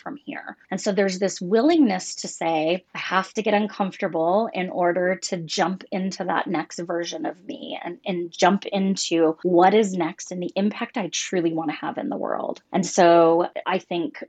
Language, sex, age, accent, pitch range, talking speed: English, female, 20-39, American, 175-210 Hz, 195 wpm